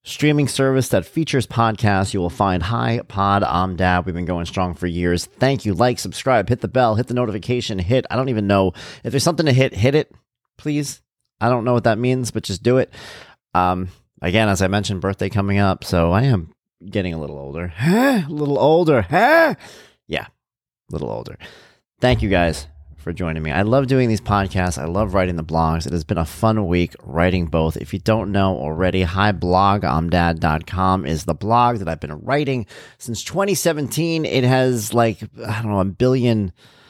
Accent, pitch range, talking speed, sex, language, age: American, 90-125 Hz, 195 wpm, male, English, 30-49